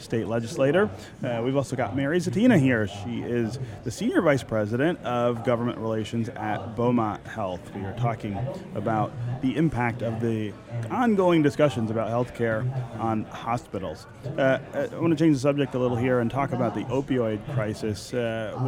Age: 30-49